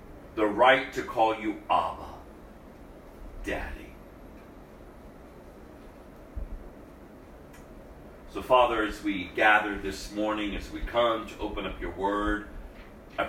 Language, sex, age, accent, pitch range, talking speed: English, male, 40-59, American, 70-110 Hz, 105 wpm